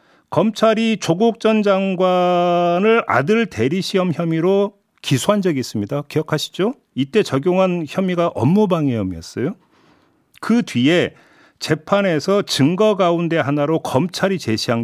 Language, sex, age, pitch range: Korean, male, 40-59, 130-205 Hz